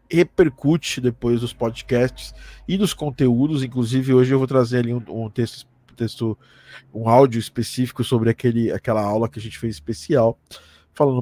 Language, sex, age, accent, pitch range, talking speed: Portuguese, male, 20-39, Brazilian, 115-145 Hz, 155 wpm